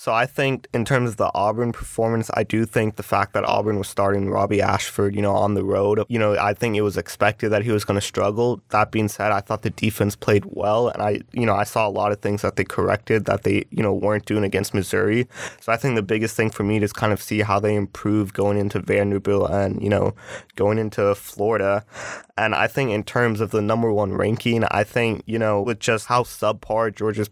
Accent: American